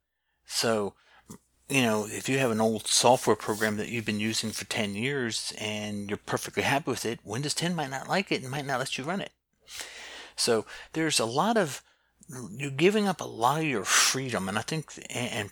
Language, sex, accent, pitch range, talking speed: English, male, American, 105-145 Hz, 205 wpm